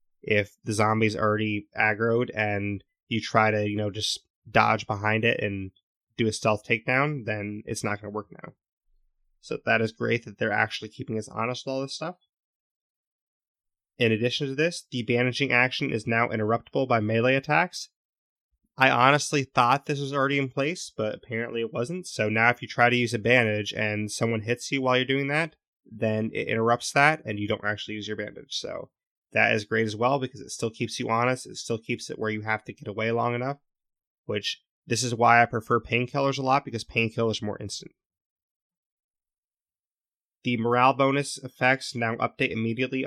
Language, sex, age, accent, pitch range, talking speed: English, male, 20-39, American, 110-130 Hz, 195 wpm